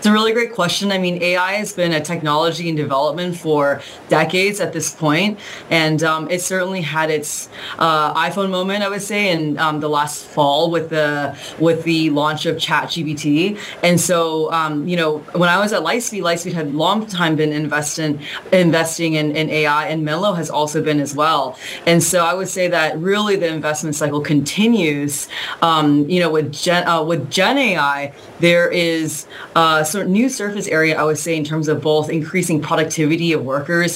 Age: 20-39